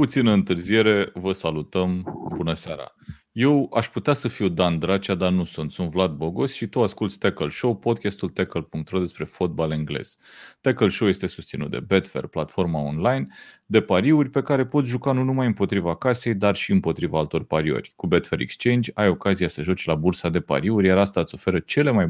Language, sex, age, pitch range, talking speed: Romanian, male, 30-49, 90-120 Hz, 185 wpm